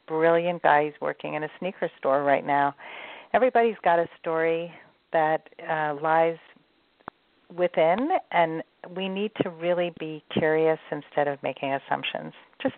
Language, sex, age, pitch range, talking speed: English, female, 40-59, 150-185 Hz, 135 wpm